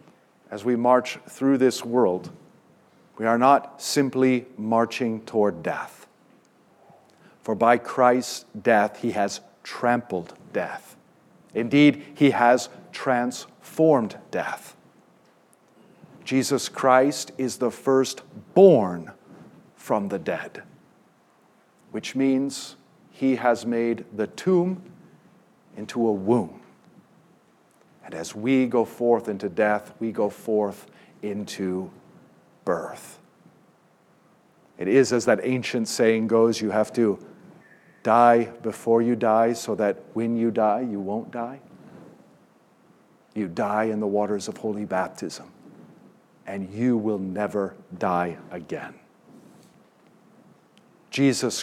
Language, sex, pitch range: English, male, 110-130 Hz